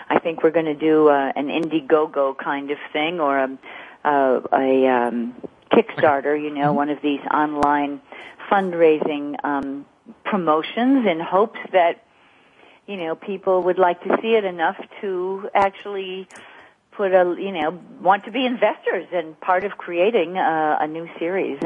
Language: English